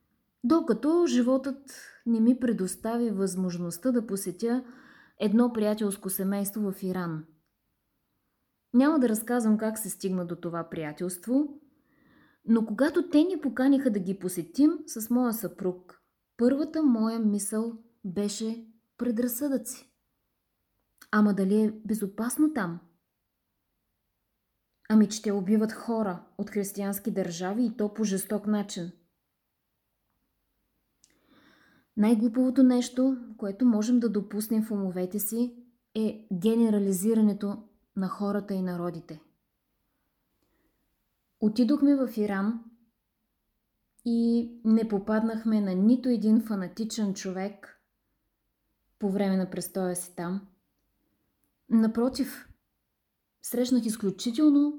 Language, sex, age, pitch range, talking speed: Bulgarian, female, 20-39, 195-245 Hz, 100 wpm